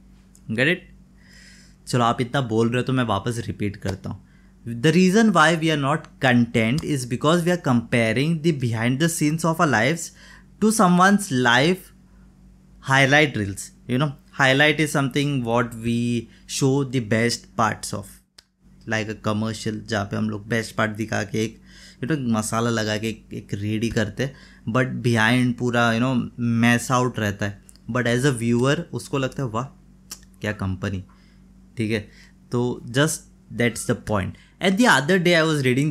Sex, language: male, Hindi